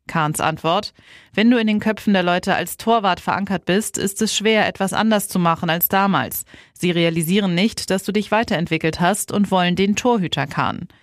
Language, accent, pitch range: German, German, 170-210 Hz